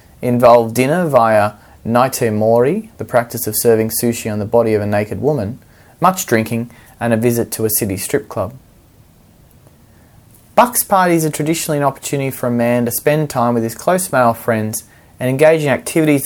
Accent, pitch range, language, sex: Australian, 110-150 Hz, English, male